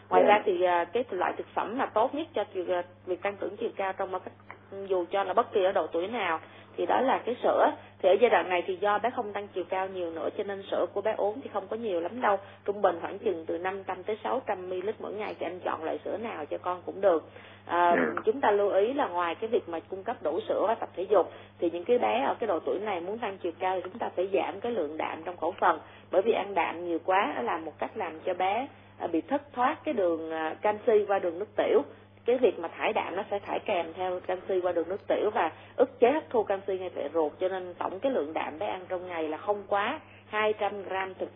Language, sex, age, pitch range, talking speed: Vietnamese, female, 20-39, 180-210 Hz, 265 wpm